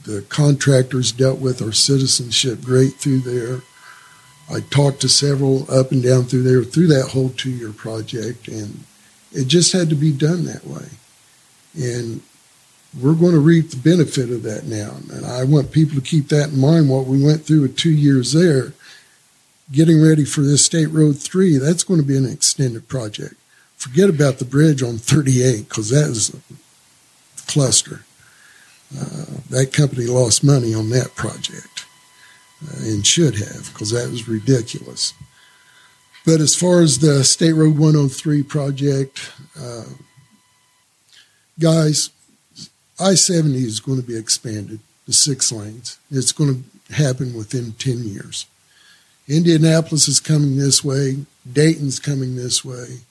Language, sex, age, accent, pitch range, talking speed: English, male, 60-79, American, 125-155 Hz, 155 wpm